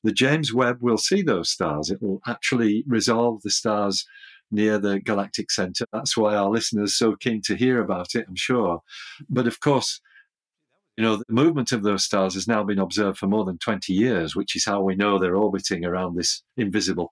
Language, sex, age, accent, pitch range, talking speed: English, male, 50-69, British, 100-115 Hz, 205 wpm